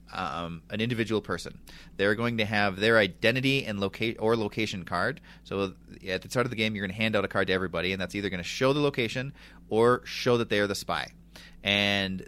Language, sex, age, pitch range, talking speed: English, male, 30-49, 95-120 Hz, 230 wpm